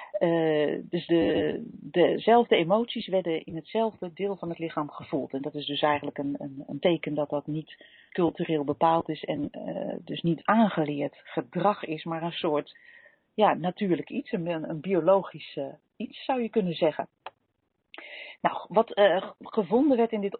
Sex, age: female, 40-59